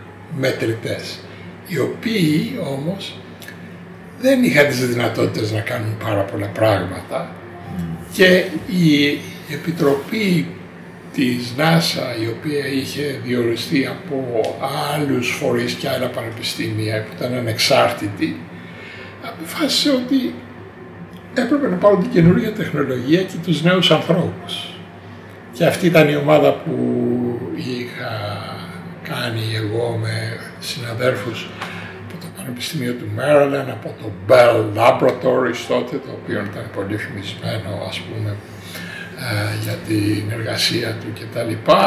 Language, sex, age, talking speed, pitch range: Greek, male, 60-79, 105 wpm, 110-170 Hz